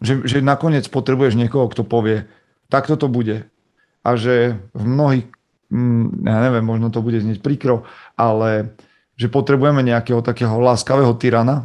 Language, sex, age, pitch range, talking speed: Slovak, male, 40-59, 115-135 Hz, 145 wpm